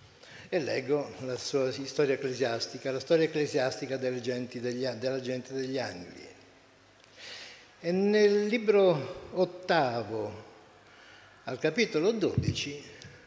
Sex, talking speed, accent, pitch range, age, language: male, 90 wpm, native, 125-165 Hz, 60-79, Italian